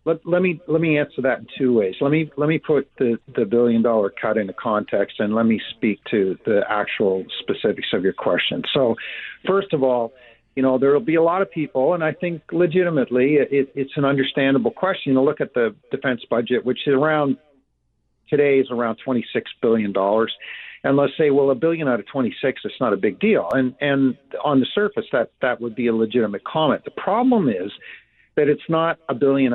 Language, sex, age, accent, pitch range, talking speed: English, male, 50-69, American, 115-155 Hz, 215 wpm